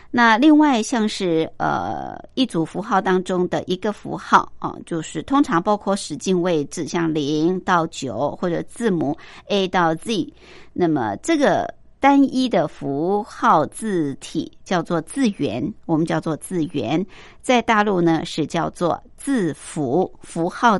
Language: Chinese